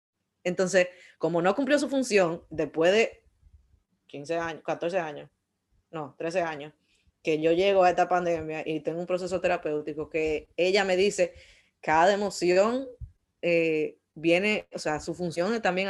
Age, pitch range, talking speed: 20-39, 155-195 Hz, 150 wpm